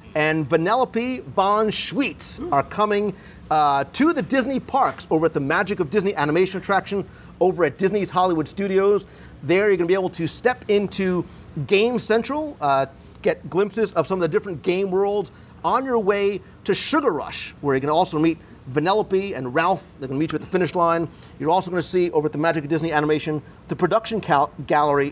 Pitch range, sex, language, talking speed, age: 150-200 Hz, male, English, 190 wpm, 40-59